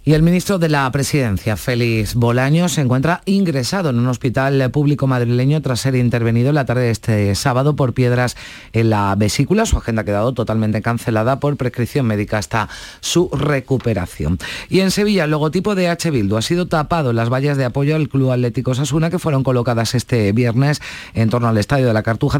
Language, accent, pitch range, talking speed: Spanish, Spanish, 115-150 Hz, 200 wpm